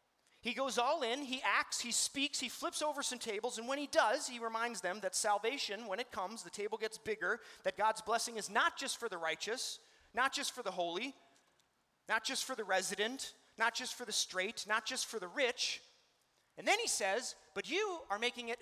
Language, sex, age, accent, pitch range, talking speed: English, male, 30-49, American, 200-275 Hz, 215 wpm